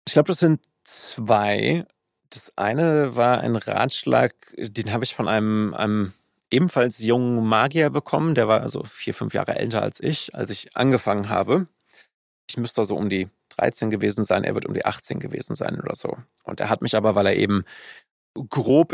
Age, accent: 30-49, German